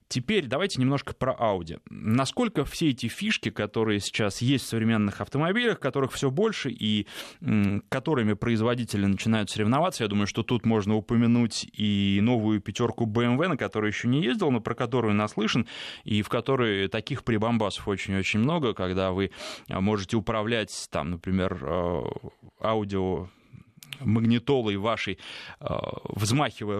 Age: 20-39